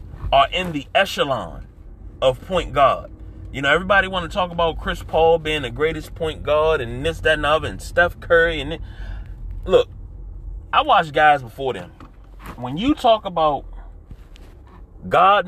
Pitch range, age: 115-185 Hz, 30-49